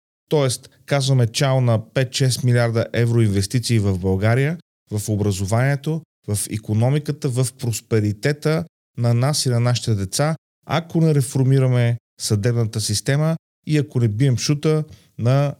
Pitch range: 115-140 Hz